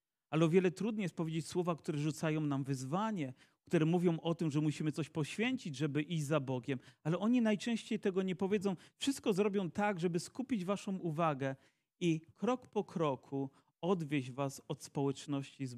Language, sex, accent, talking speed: Polish, male, native, 170 wpm